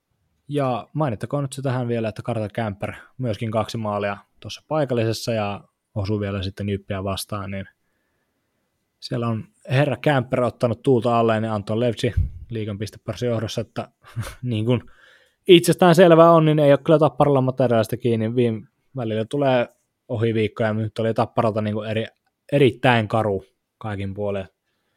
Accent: native